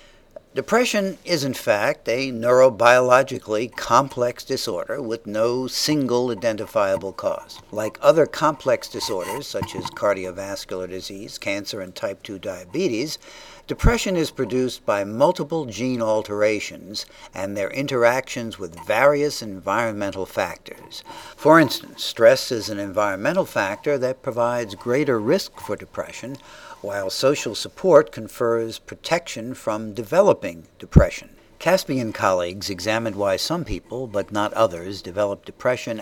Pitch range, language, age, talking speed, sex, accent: 105-135 Hz, English, 60-79, 120 wpm, male, American